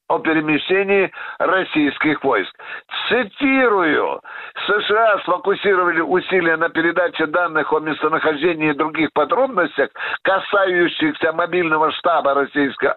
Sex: male